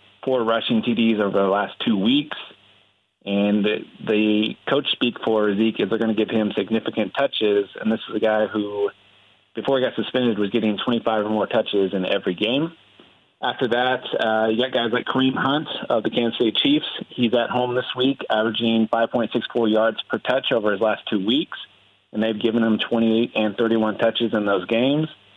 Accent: American